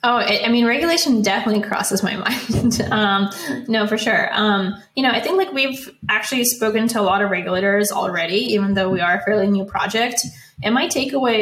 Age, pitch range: 10-29, 190-215 Hz